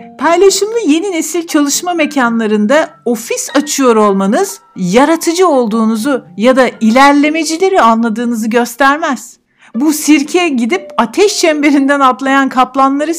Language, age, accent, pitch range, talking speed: Turkish, 60-79, native, 235-335 Hz, 100 wpm